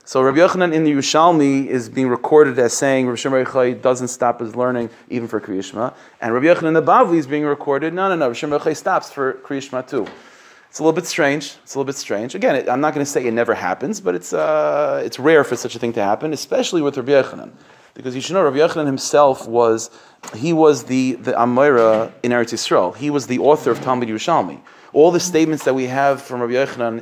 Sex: male